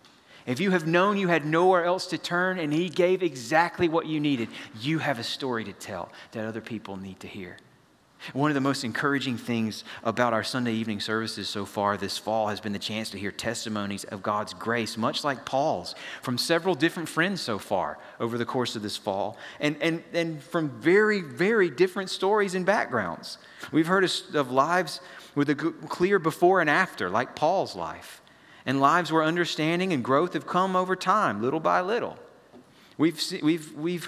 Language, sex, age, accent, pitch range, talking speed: English, male, 30-49, American, 130-185 Hz, 190 wpm